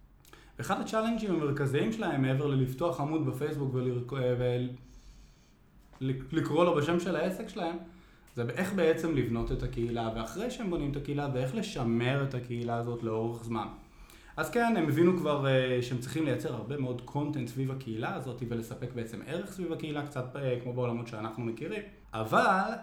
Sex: male